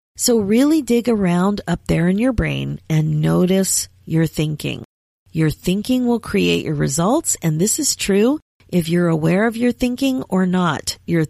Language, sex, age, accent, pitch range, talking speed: English, female, 40-59, American, 155-205 Hz, 170 wpm